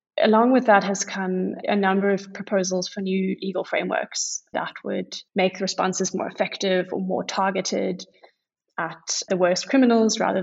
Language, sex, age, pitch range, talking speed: English, female, 20-39, 185-200 Hz, 155 wpm